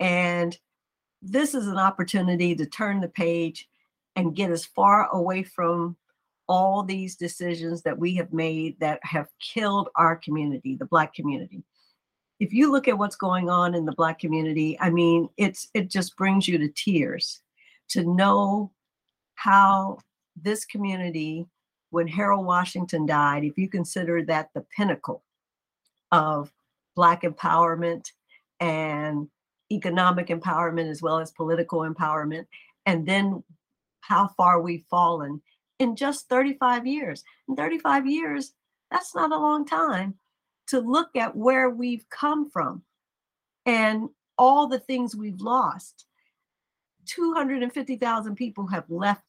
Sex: female